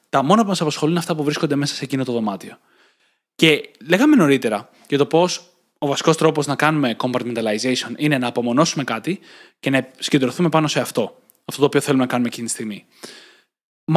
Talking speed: 195 wpm